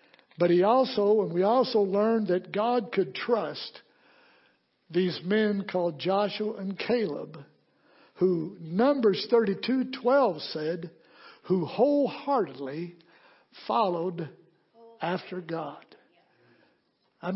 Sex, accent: male, American